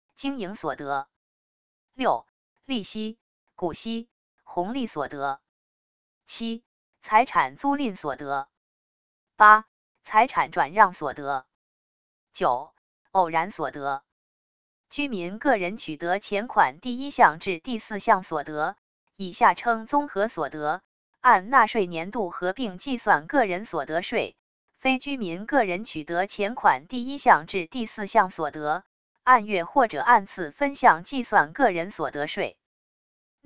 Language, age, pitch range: Chinese, 20-39, 165-240 Hz